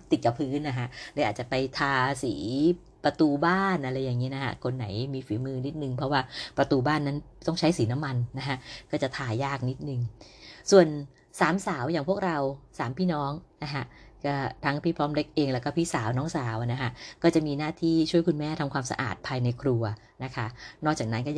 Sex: female